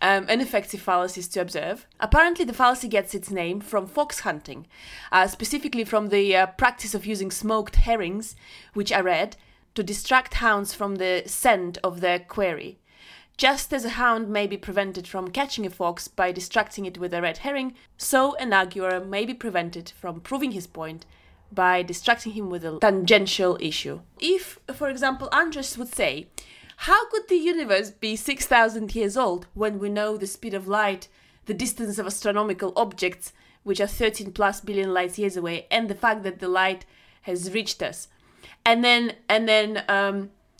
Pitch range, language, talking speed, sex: 185-240 Hz, English, 175 wpm, female